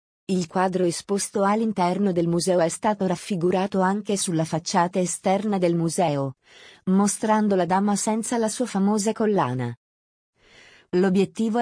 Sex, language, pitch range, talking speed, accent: female, Italian, 175-215 Hz, 125 wpm, native